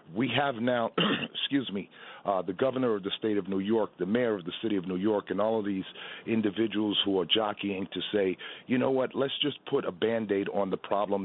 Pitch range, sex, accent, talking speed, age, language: 100-125 Hz, male, American, 215 wpm, 50-69, English